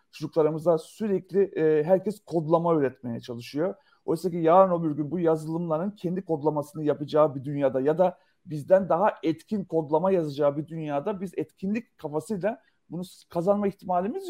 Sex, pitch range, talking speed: male, 150-180 Hz, 140 wpm